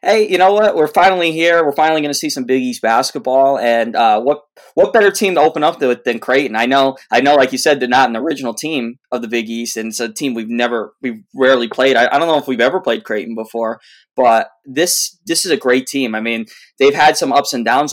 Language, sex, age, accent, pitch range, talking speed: English, male, 20-39, American, 115-135 Hz, 260 wpm